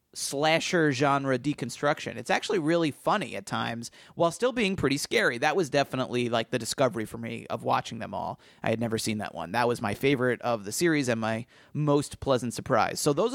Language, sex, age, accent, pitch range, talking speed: English, male, 30-49, American, 120-155 Hz, 205 wpm